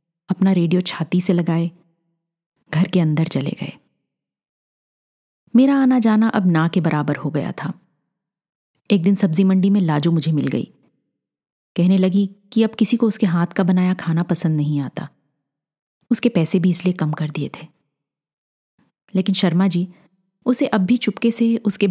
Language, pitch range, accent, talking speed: Hindi, 160-215 Hz, native, 165 wpm